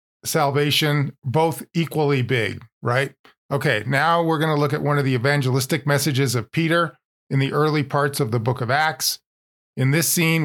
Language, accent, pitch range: English, American, 125-155 Hz